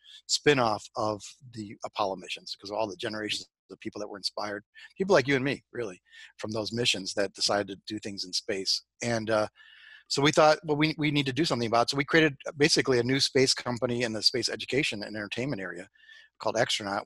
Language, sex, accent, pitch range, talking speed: English, male, American, 105-125 Hz, 220 wpm